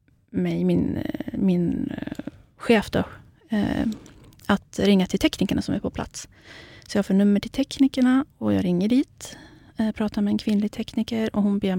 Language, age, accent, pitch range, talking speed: Swedish, 30-49, native, 180-220 Hz, 155 wpm